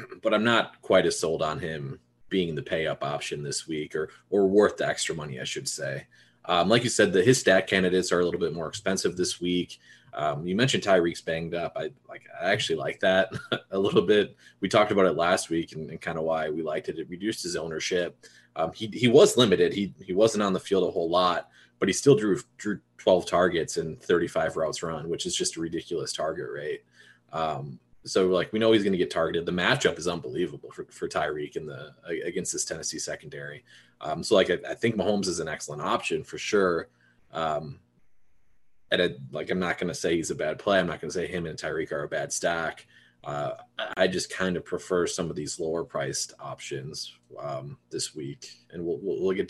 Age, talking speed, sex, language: 20-39, 225 wpm, male, English